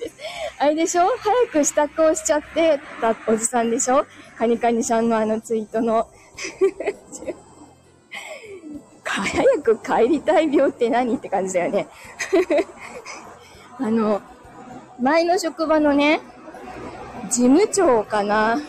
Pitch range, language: 230-355 Hz, Japanese